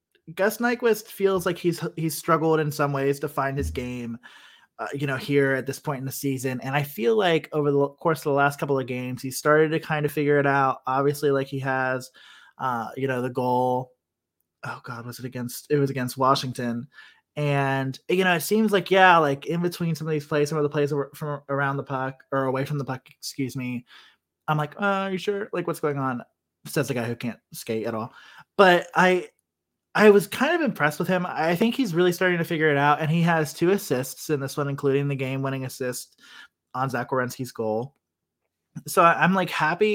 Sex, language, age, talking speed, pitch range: male, English, 20-39, 225 wpm, 130-160 Hz